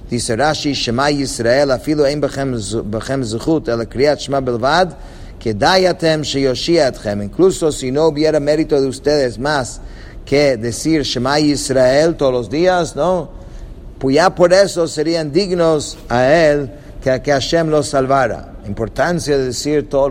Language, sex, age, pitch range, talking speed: English, male, 50-69, 120-150 Hz, 115 wpm